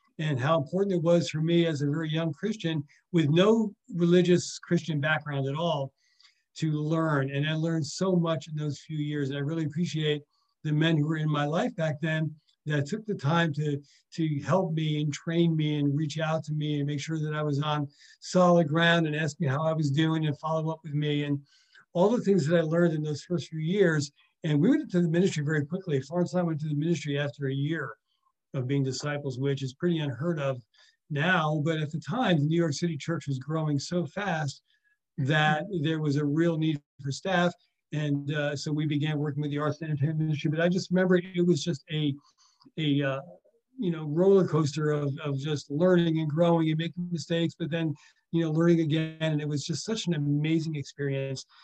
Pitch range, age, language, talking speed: 150-175 Hz, 60-79, English, 220 wpm